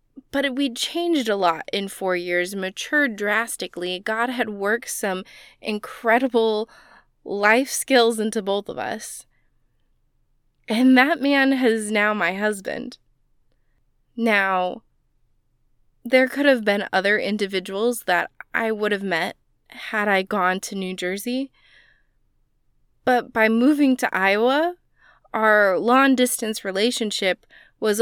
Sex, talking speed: female, 120 wpm